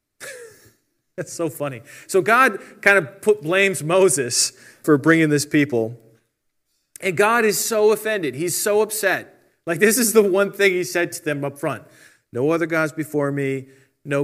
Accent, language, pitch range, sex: American, English, 130-170 Hz, male